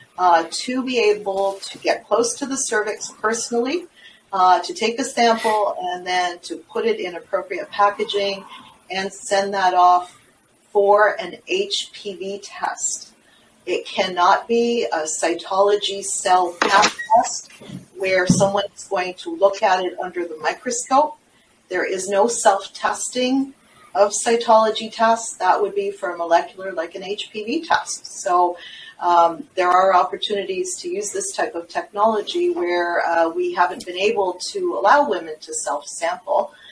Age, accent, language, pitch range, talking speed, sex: 40-59, American, English, 180-230 Hz, 145 wpm, female